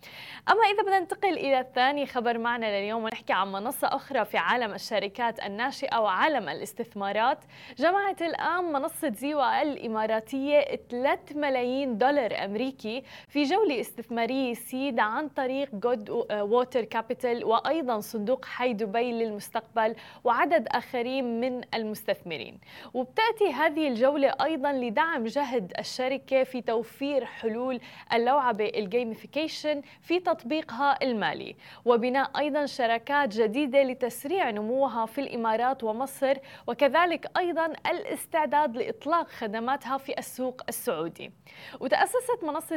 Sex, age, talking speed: female, 20-39, 110 wpm